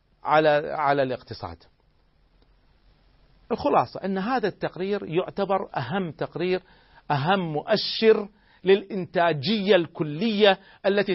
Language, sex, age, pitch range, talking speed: Arabic, male, 40-59, 120-190 Hz, 75 wpm